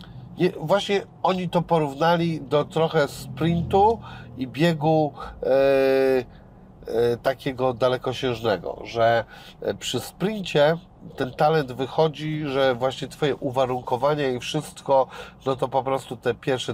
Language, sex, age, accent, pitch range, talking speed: Polish, male, 40-59, native, 120-145 Hz, 105 wpm